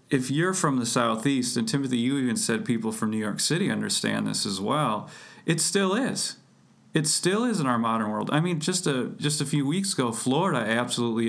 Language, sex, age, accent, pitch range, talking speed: English, male, 40-59, American, 120-165 Hz, 215 wpm